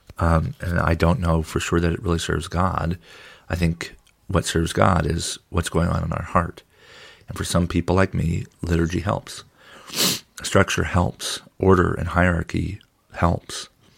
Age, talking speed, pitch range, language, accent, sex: 40-59, 165 wpm, 85-95 Hz, English, American, male